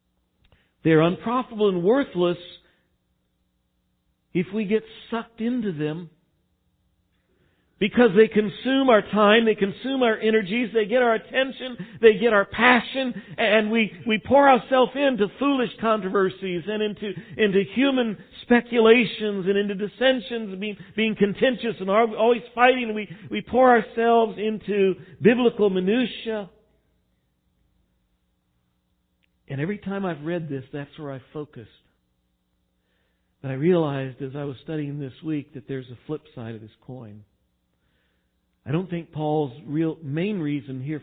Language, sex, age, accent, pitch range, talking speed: English, male, 60-79, American, 135-210 Hz, 130 wpm